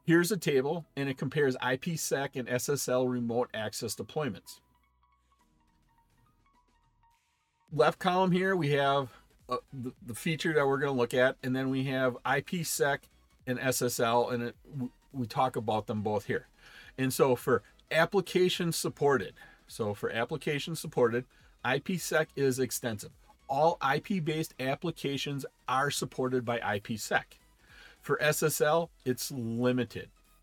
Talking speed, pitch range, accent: 130 wpm, 125-165 Hz, American